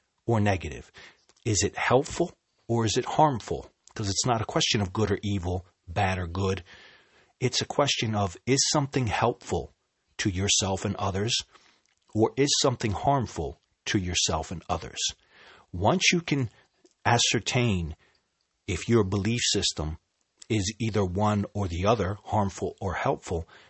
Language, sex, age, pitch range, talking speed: English, male, 40-59, 90-115 Hz, 145 wpm